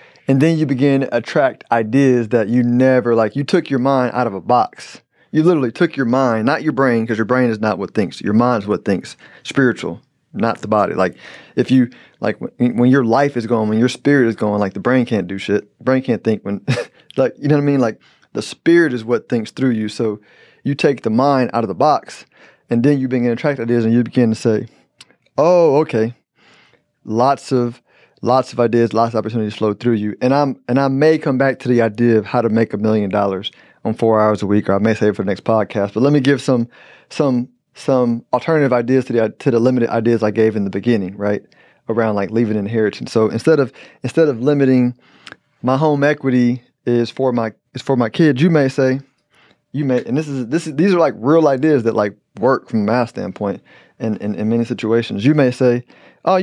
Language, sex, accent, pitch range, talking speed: English, male, American, 110-135 Hz, 230 wpm